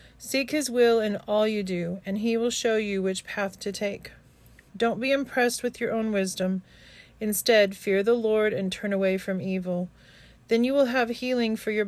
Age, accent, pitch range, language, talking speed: 40-59, American, 190-235 Hz, English, 195 wpm